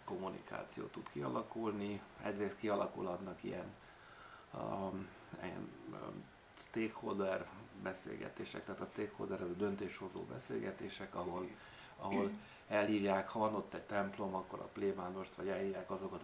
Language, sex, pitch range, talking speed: Hungarian, male, 95-115 Hz, 120 wpm